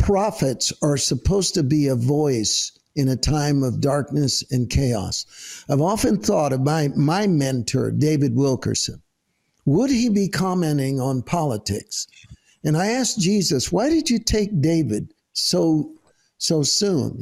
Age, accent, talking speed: 60-79, American, 145 wpm